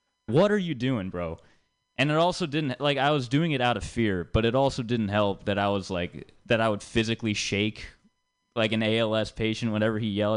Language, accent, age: English, American, 20-39